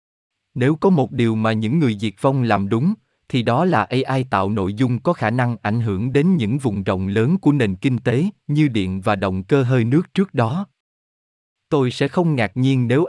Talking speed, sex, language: 215 wpm, male, Vietnamese